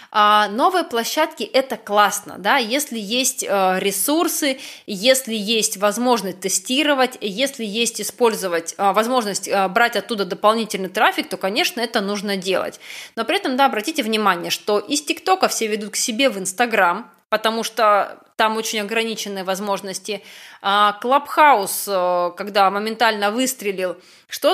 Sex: female